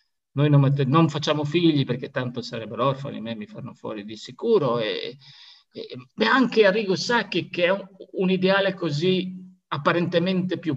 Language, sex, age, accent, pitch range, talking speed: Italian, male, 50-69, native, 140-185 Hz, 160 wpm